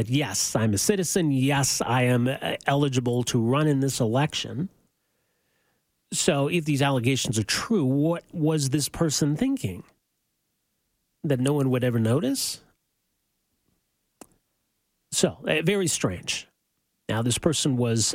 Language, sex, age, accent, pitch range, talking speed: English, male, 40-59, American, 125-160 Hz, 120 wpm